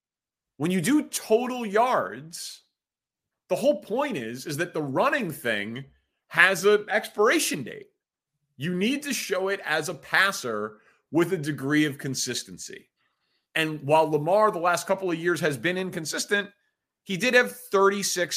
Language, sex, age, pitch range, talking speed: English, male, 30-49, 150-210 Hz, 150 wpm